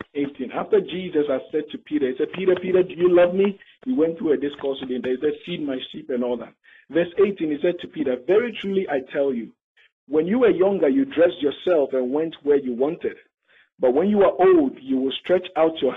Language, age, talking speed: English, 50-69, 235 wpm